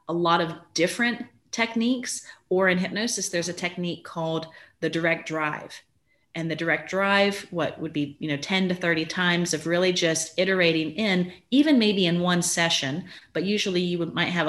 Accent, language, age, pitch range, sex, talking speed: American, English, 30-49, 155-185 Hz, female, 180 wpm